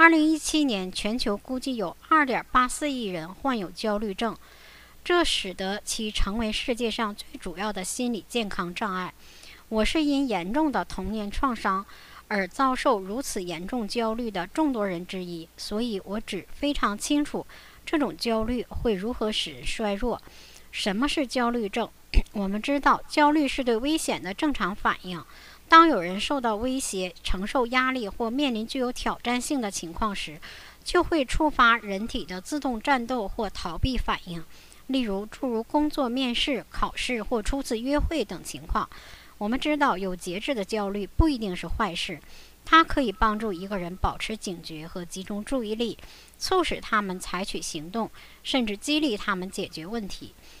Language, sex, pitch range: English, male, 195-270 Hz